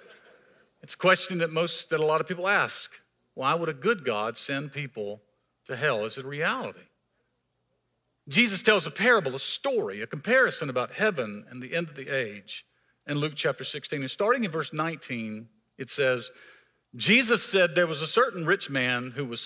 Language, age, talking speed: English, 50-69, 185 wpm